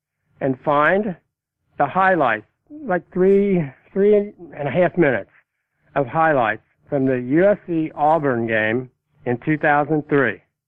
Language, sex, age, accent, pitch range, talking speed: English, male, 60-79, American, 140-170 Hz, 110 wpm